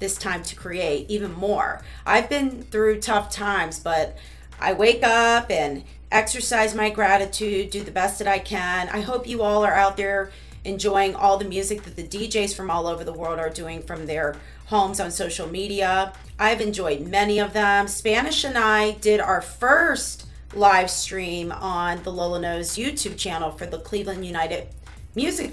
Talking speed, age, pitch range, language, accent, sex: 180 wpm, 30-49, 185-220 Hz, English, American, female